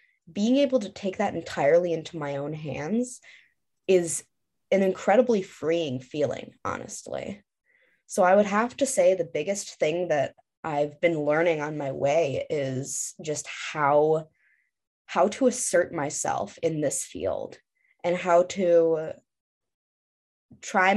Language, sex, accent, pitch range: English, female, American, 150-190 Hz